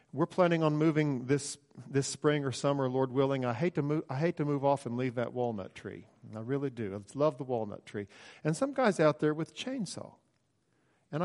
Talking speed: 225 wpm